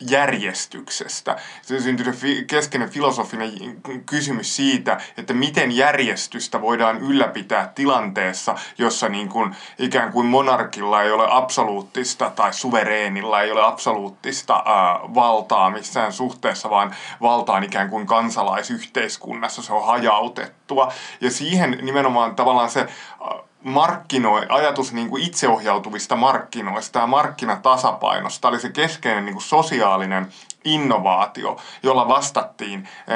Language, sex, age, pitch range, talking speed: Finnish, male, 20-39, 110-135 Hz, 110 wpm